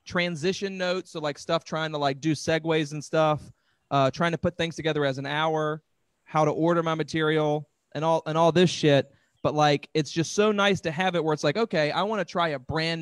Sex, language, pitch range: male, English, 140-165 Hz